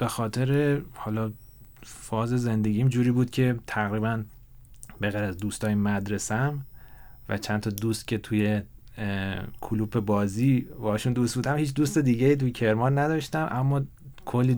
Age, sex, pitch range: 30-49, male, 105-130 Hz